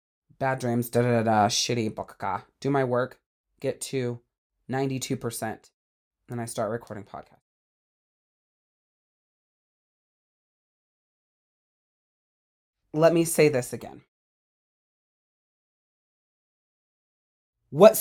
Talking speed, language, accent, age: 80 wpm, English, American, 30-49